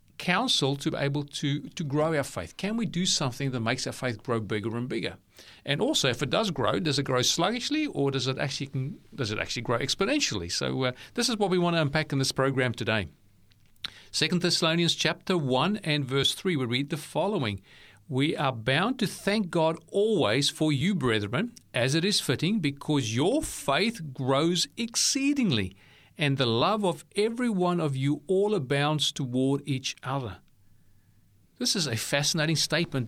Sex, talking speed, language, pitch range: male, 185 wpm, English, 130-180 Hz